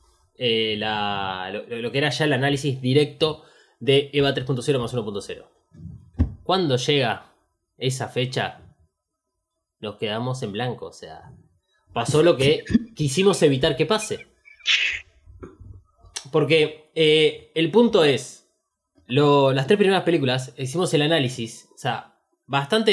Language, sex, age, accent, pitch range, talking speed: Spanish, male, 20-39, Argentinian, 125-165 Hz, 125 wpm